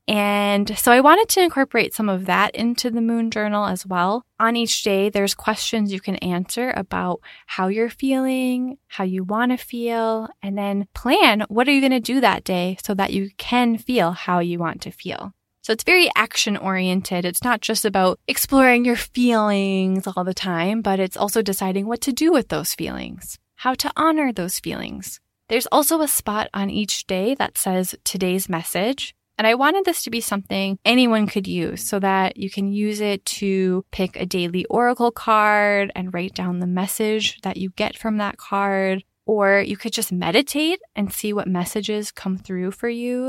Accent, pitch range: American, 190-235 Hz